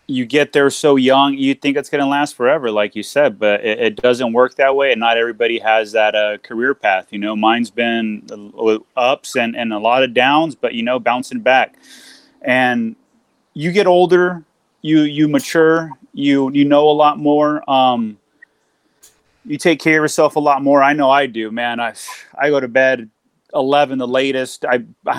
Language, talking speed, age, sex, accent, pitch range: English, 200 wpm, 30-49, male, American, 120-150 Hz